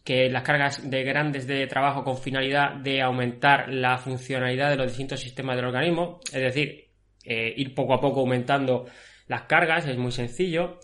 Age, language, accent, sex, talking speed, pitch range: 20-39, Spanish, Spanish, male, 175 wpm, 130-150 Hz